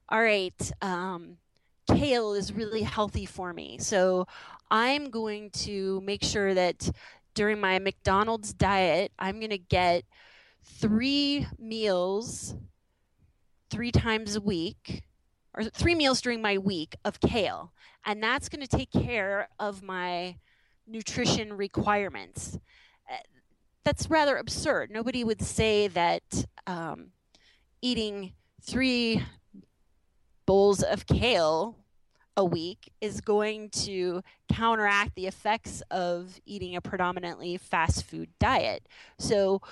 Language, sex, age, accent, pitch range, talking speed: English, female, 30-49, American, 185-225 Hz, 115 wpm